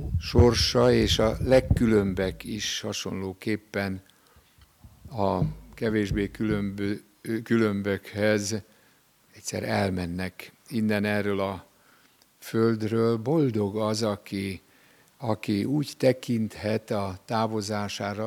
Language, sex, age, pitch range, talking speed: Hungarian, male, 60-79, 100-115 Hz, 75 wpm